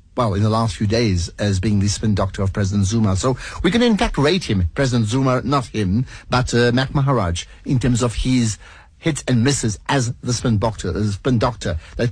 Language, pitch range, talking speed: English, 105-130 Hz, 220 wpm